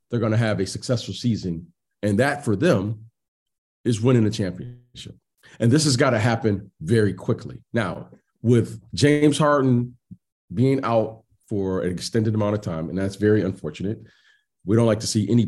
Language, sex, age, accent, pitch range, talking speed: English, male, 40-59, American, 105-130 Hz, 175 wpm